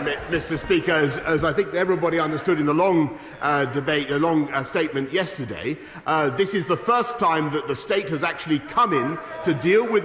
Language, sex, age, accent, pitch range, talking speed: English, male, 40-59, British, 170-230 Hz, 205 wpm